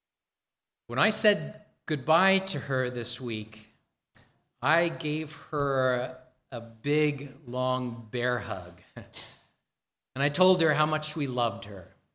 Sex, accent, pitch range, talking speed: male, American, 125-155 Hz, 125 wpm